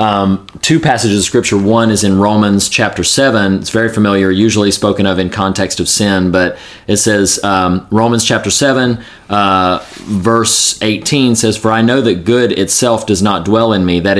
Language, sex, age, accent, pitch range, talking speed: English, male, 30-49, American, 95-110 Hz, 185 wpm